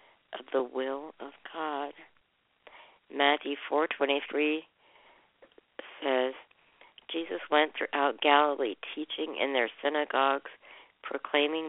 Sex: female